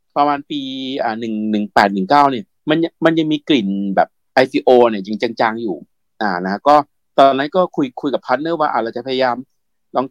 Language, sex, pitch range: Thai, male, 125-170 Hz